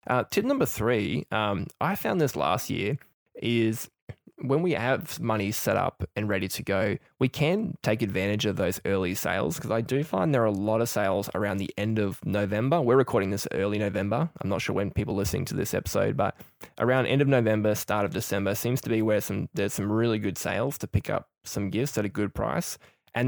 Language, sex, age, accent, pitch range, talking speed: English, male, 20-39, Australian, 100-120 Hz, 225 wpm